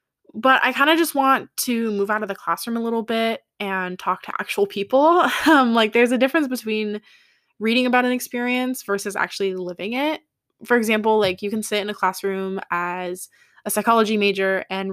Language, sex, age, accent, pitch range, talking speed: English, female, 20-39, American, 190-230 Hz, 195 wpm